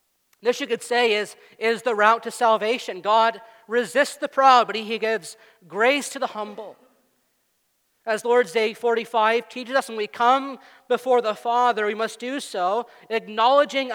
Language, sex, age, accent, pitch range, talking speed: English, male, 40-59, American, 200-250 Hz, 170 wpm